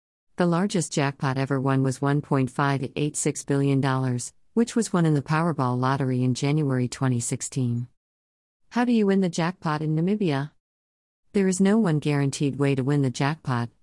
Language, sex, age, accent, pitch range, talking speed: English, female, 50-69, American, 130-160 Hz, 155 wpm